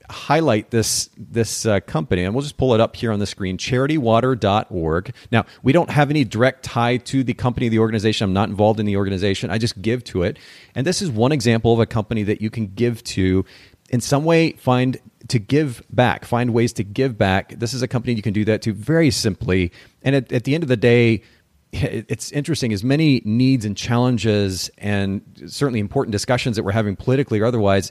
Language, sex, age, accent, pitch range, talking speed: English, male, 40-59, American, 100-125 Hz, 215 wpm